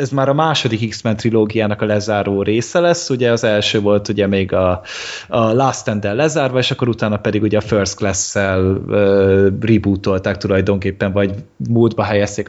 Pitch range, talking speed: 105-140 Hz, 170 wpm